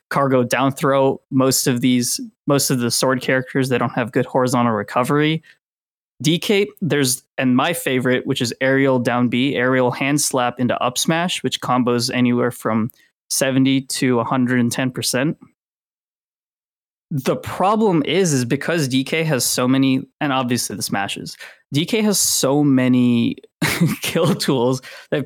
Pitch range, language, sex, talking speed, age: 125-145 Hz, English, male, 145 wpm, 20-39